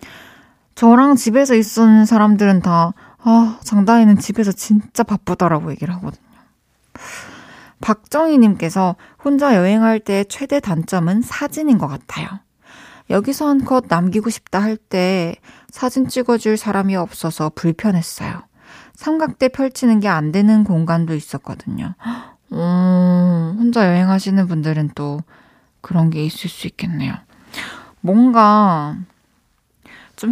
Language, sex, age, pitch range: Korean, female, 20-39, 170-230 Hz